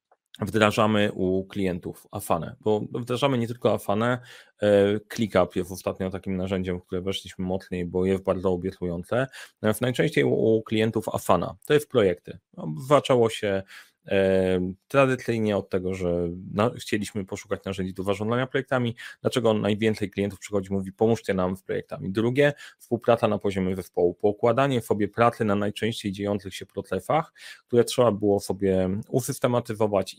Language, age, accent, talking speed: Polish, 30-49, native, 140 wpm